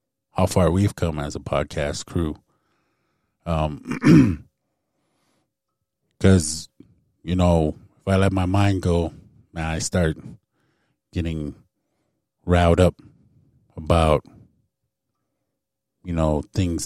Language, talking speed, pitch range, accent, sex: English, 100 wpm, 80-95 Hz, American, male